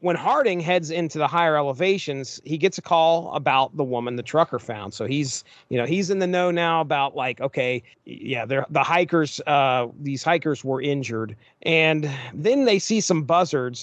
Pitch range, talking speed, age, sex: 130-170 Hz, 185 wpm, 40-59, male